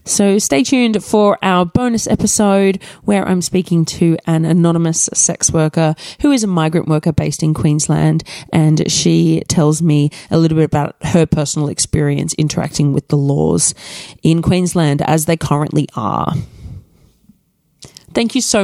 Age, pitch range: 30-49, 150-185 Hz